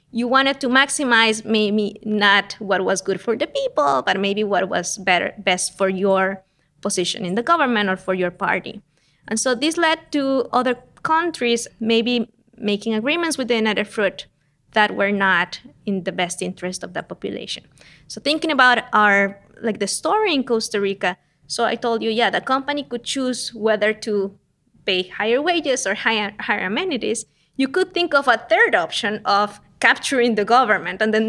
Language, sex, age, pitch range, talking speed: English, female, 20-39, 200-255 Hz, 180 wpm